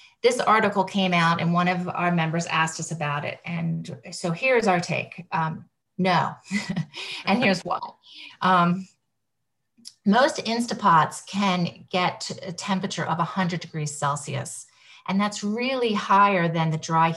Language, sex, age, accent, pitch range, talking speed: English, female, 40-59, American, 150-190 Hz, 140 wpm